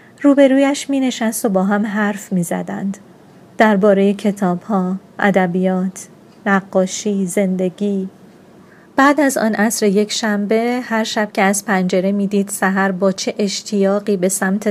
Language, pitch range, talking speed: Persian, 190-210 Hz, 140 wpm